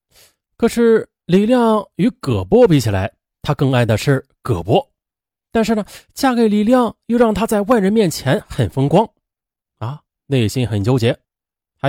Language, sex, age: Chinese, male, 30-49